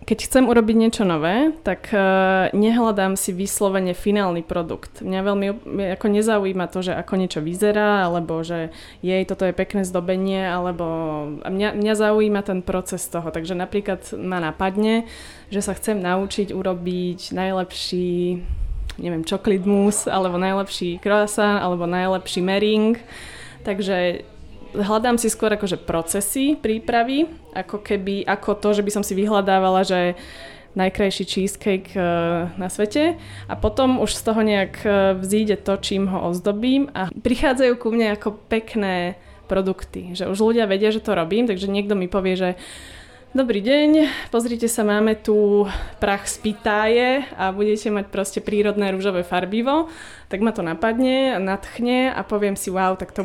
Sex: female